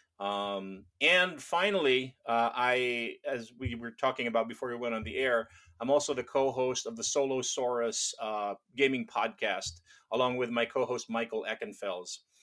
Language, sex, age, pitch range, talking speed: English, male, 30-49, 115-160 Hz, 155 wpm